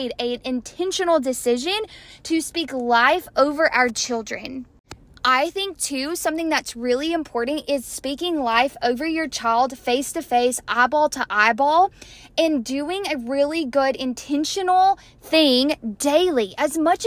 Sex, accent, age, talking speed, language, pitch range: female, American, 10-29, 135 wpm, English, 260-340 Hz